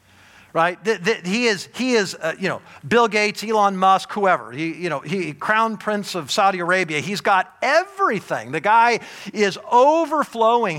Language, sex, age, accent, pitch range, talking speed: English, male, 50-69, American, 185-245 Hz, 170 wpm